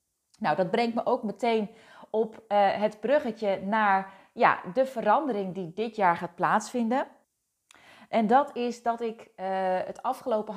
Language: Dutch